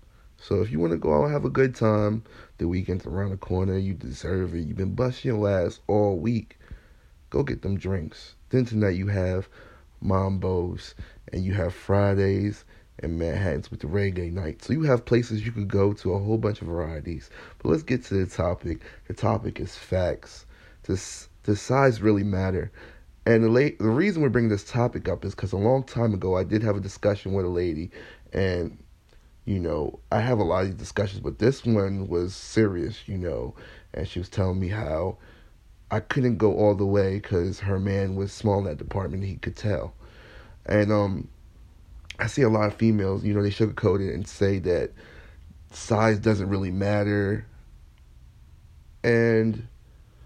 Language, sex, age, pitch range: English, male, 30-49, 90-110 Hz